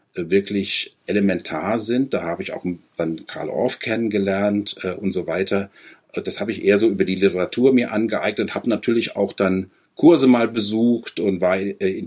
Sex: male